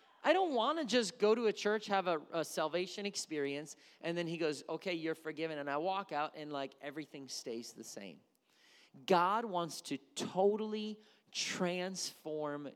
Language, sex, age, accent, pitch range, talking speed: English, male, 40-59, American, 125-190 Hz, 170 wpm